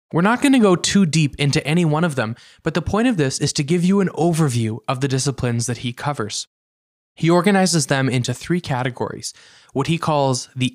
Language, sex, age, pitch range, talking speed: English, male, 20-39, 125-165 Hz, 220 wpm